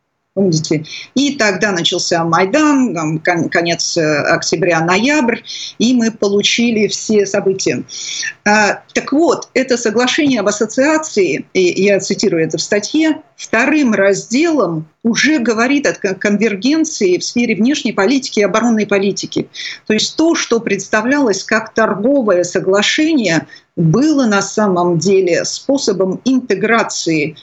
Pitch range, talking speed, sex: 185-255 Hz, 120 wpm, female